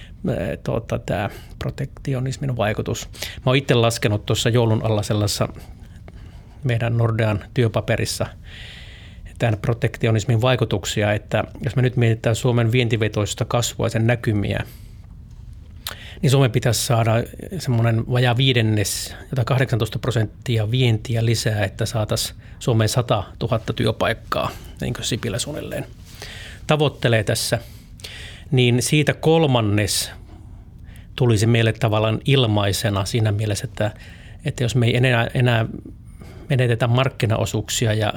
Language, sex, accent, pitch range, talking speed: Finnish, male, native, 105-125 Hz, 105 wpm